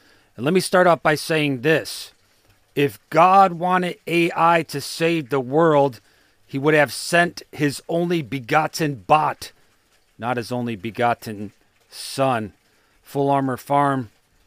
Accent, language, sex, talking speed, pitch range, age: American, English, male, 135 wpm, 115-150 Hz, 40-59